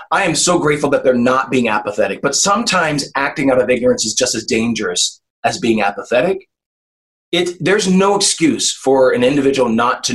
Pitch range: 125-185 Hz